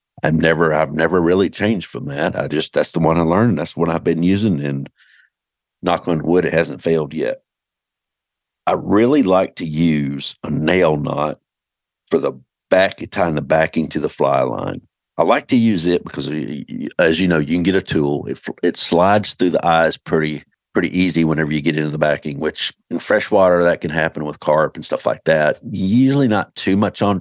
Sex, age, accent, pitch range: male, 50-69, American, 80-90 Hz